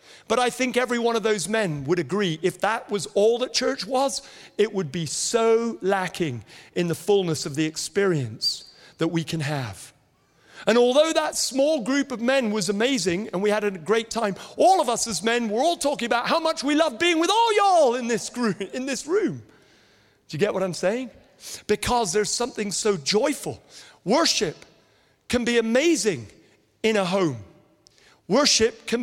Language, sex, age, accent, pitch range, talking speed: English, male, 40-59, British, 155-230 Hz, 180 wpm